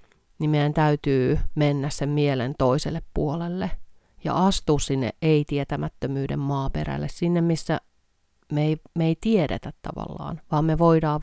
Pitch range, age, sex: 115-160 Hz, 30-49, female